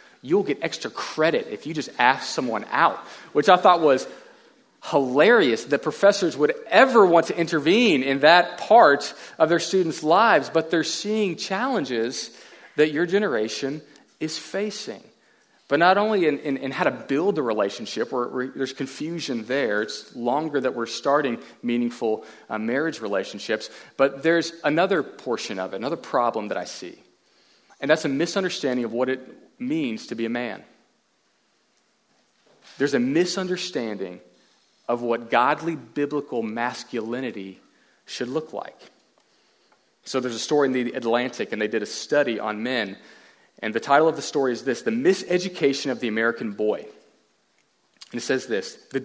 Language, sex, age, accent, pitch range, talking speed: English, male, 40-59, American, 120-170 Hz, 155 wpm